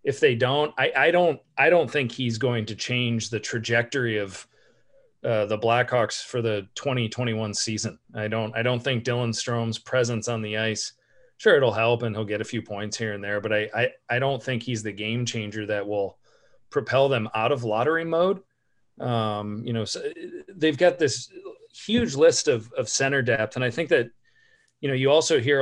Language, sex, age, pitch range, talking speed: English, male, 40-59, 115-150 Hz, 200 wpm